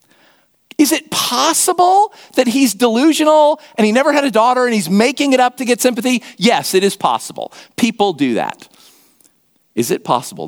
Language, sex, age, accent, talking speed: English, male, 50-69, American, 170 wpm